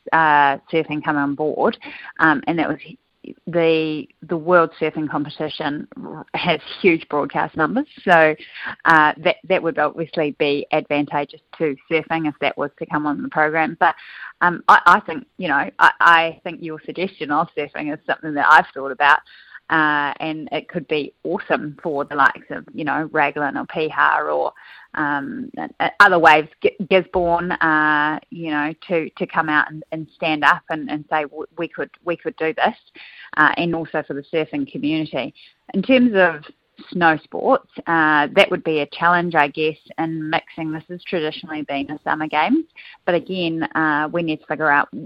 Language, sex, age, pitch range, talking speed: English, female, 30-49, 150-175 Hz, 175 wpm